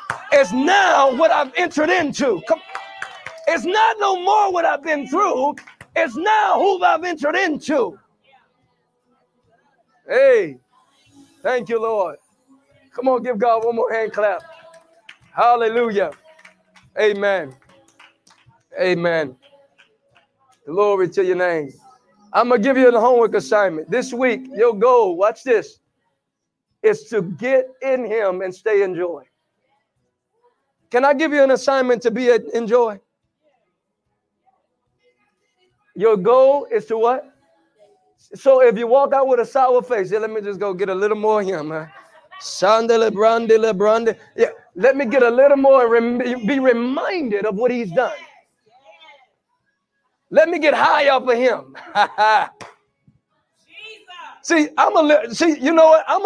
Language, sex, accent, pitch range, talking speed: English, male, American, 225-320 Hz, 140 wpm